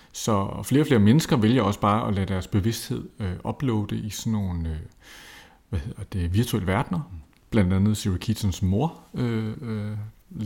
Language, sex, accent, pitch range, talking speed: Danish, male, native, 95-120 Hz, 165 wpm